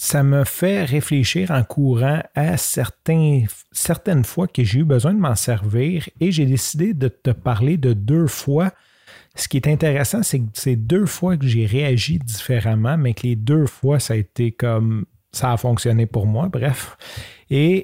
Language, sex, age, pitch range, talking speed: French, male, 40-59, 115-145 Hz, 185 wpm